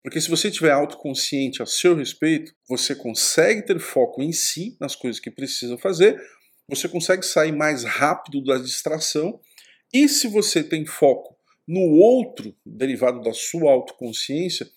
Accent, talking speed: Brazilian, 150 wpm